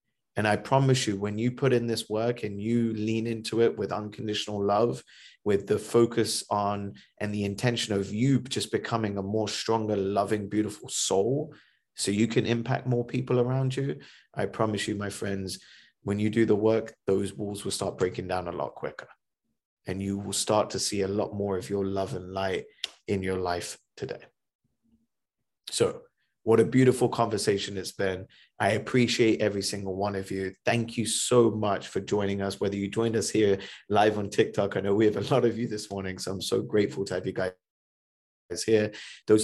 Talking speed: 195 wpm